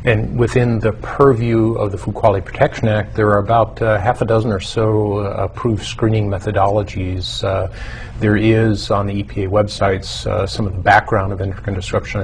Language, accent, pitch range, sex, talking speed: English, American, 100-115 Hz, male, 185 wpm